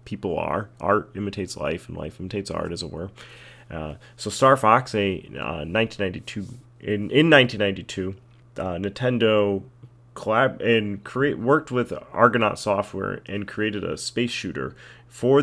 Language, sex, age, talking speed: English, male, 30-49, 160 wpm